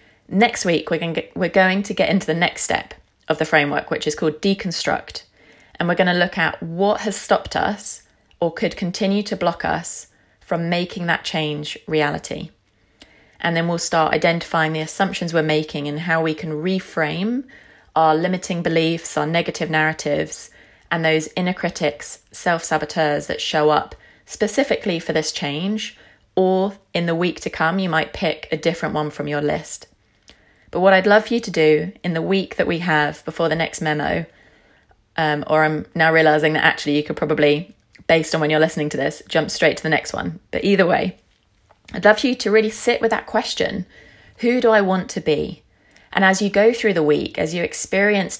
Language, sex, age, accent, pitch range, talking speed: English, female, 30-49, British, 155-190 Hz, 190 wpm